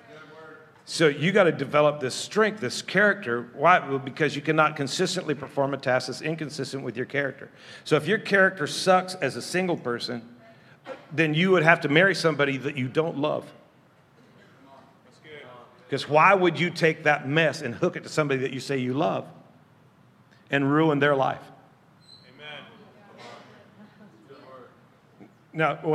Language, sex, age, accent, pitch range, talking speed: English, male, 50-69, American, 145-185 Hz, 155 wpm